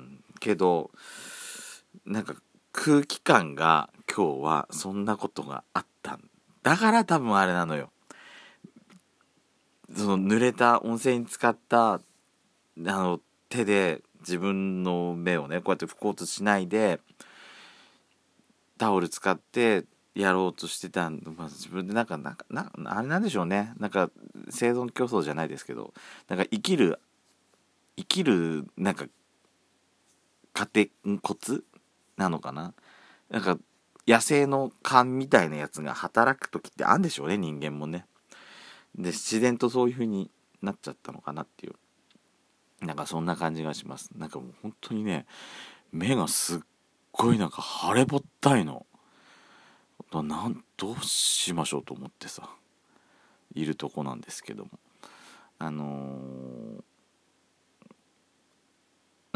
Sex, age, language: male, 40-59, Japanese